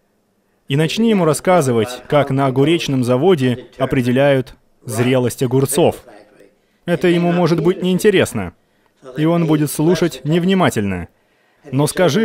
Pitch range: 120-175 Hz